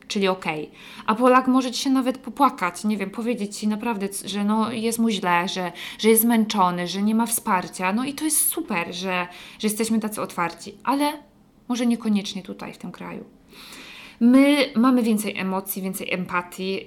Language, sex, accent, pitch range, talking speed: English, female, Polish, 180-230 Hz, 175 wpm